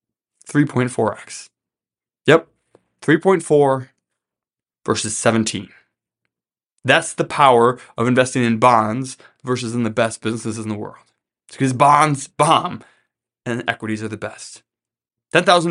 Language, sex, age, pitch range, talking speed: English, male, 20-39, 110-140 Hz, 115 wpm